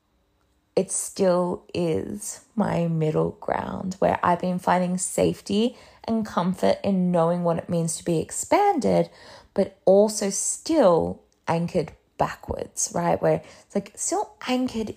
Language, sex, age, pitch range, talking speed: English, female, 20-39, 165-210 Hz, 130 wpm